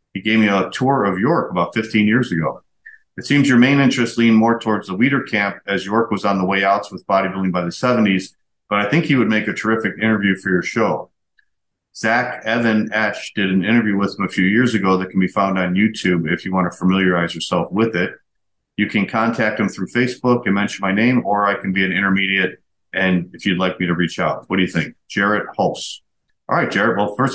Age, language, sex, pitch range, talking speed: 50-69, English, male, 90-110 Hz, 235 wpm